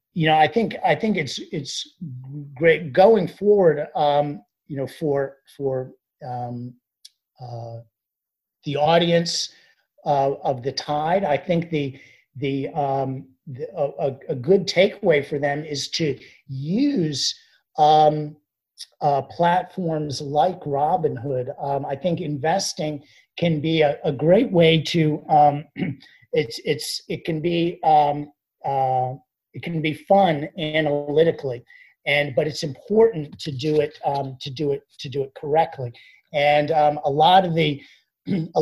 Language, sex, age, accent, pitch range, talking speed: English, male, 50-69, American, 140-160 Hz, 140 wpm